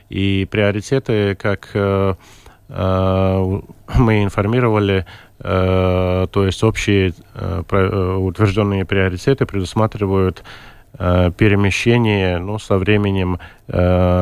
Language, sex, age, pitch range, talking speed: Russian, male, 20-39, 95-105 Hz, 85 wpm